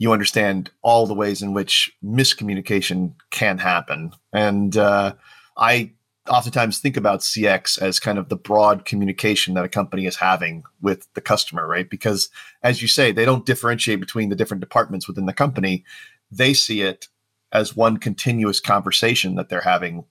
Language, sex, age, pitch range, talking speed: English, male, 40-59, 95-120 Hz, 165 wpm